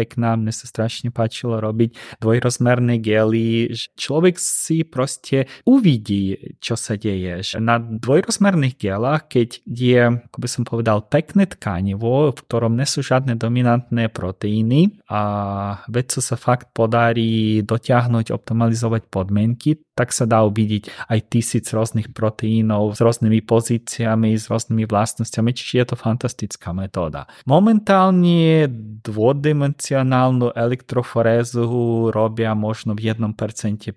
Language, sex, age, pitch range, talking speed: Slovak, male, 20-39, 110-130 Hz, 125 wpm